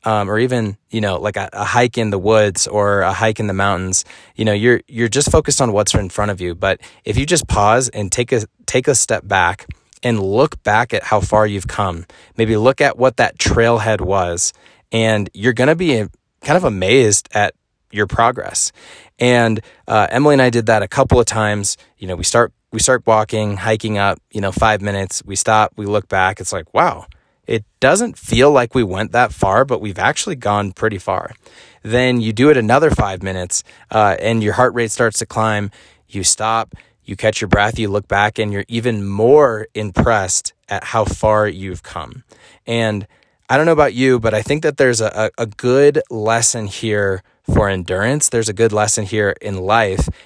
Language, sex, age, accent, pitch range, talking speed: English, male, 20-39, American, 100-120 Hz, 205 wpm